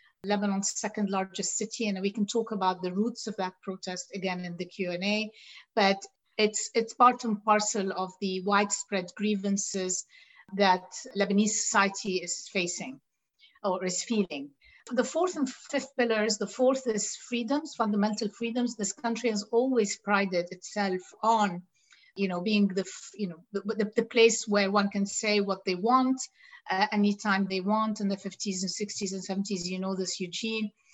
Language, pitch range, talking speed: English, 195-230 Hz, 170 wpm